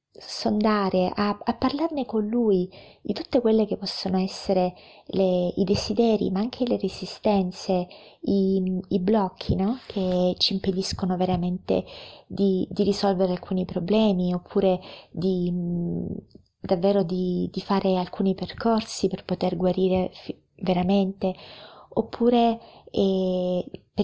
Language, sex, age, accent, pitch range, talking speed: Italian, female, 30-49, native, 180-205 Hz, 120 wpm